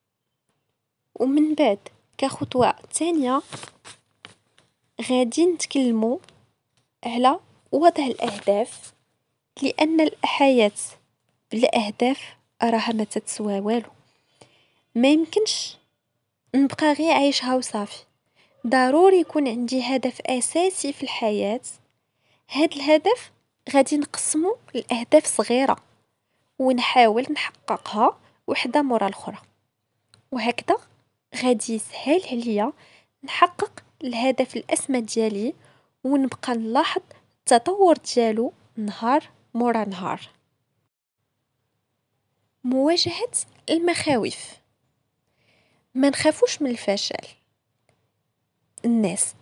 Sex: female